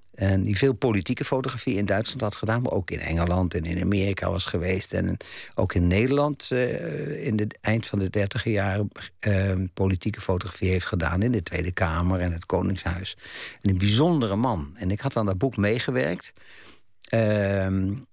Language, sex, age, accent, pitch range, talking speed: Dutch, male, 60-79, Dutch, 95-130 Hz, 180 wpm